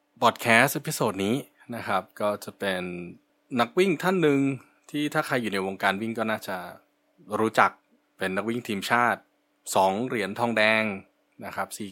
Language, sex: Thai, male